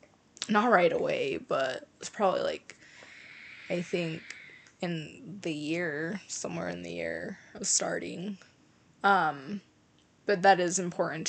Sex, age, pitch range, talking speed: female, 20-39, 170-200 Hz, 120 wpm